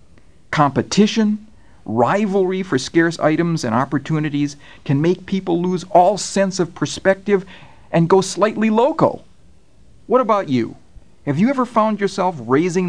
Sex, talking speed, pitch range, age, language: male, 130 wpm, 130-185 Hz, 50-69, English